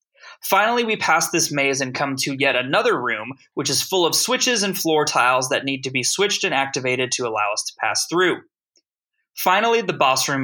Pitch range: 135-180 Hz